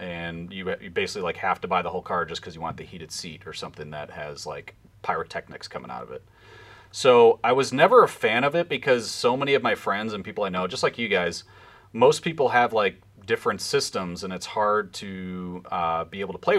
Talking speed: 235 wpm